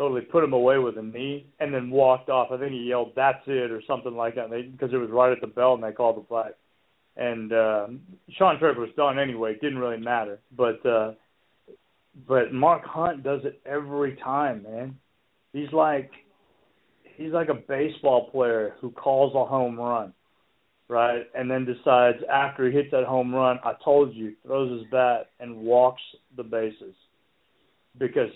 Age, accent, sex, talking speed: 40-59, American, male, 185 wpm